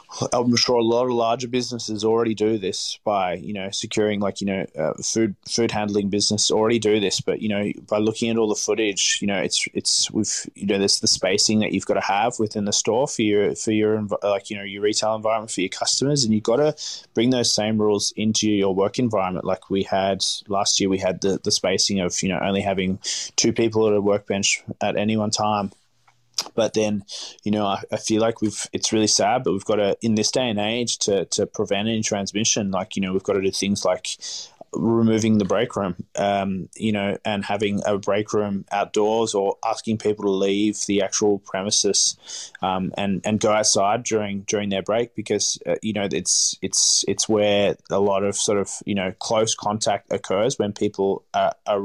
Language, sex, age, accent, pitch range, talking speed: English, male, 20-39, Australian, 100-110 Hz, 215 wpm